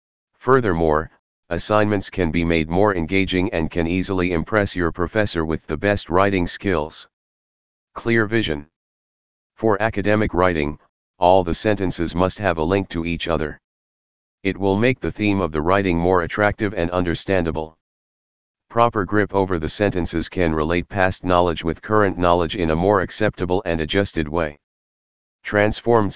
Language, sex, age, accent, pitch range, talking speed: English, male, 40-59, American, 80-100 Hz, 150 wpm